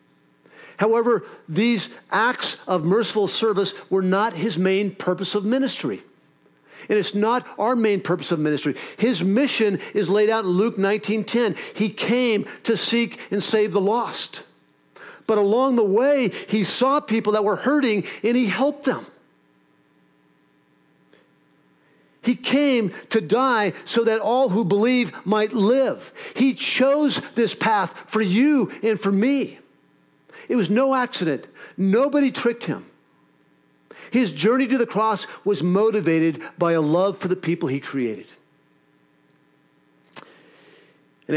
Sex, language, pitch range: male, English, 155-225 Hz